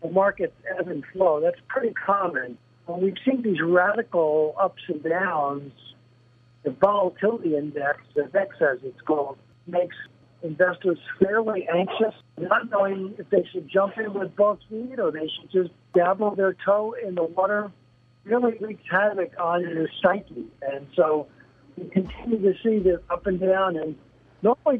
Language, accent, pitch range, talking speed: English, American, 165-200 Hz, 160 wpm